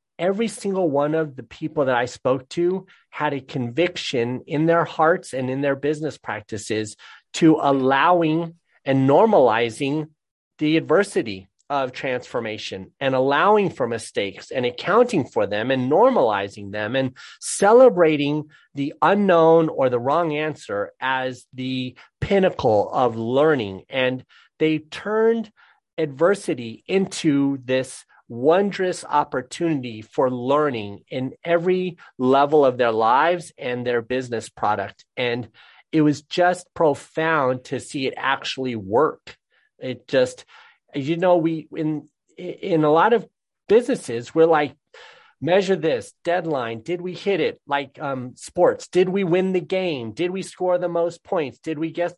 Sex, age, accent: male, 30-49, American